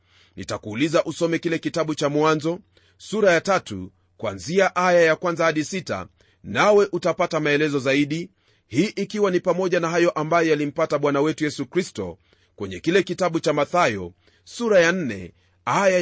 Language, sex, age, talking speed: Swahili, male, 40-59, 150 wpm